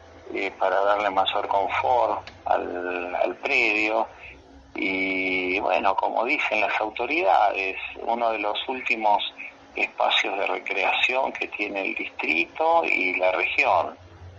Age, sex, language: 50-69, male, Spanish